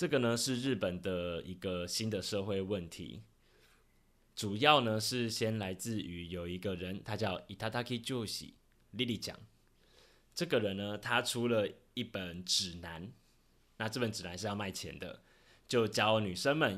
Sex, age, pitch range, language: male, 20-39, 90-110 Hz, Chinese